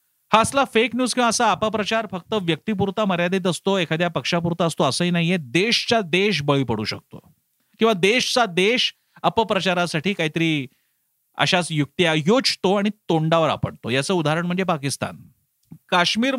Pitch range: 145-190 Hz